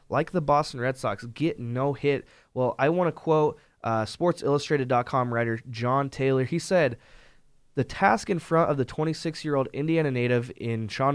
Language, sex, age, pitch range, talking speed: English, male, 20-39, 115-145 Hz, 170 wpm